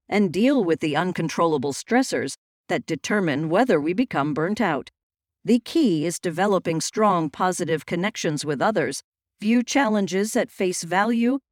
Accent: American